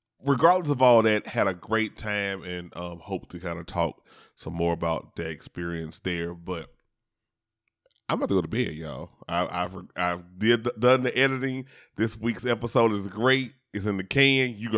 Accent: American